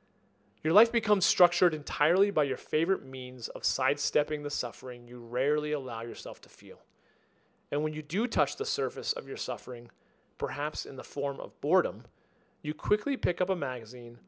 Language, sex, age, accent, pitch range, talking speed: English, male, 40-59, American, 140-180 Hz, 170 wpm